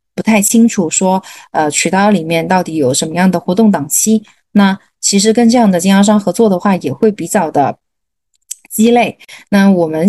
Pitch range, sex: 175-220 Hz, female